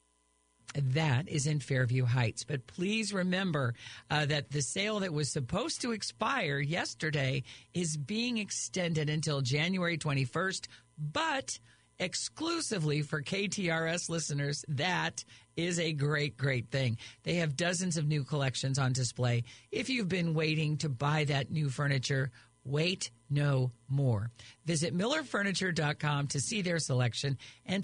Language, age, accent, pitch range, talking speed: English, 50-69, American, 125-170 Hz, 135 wpm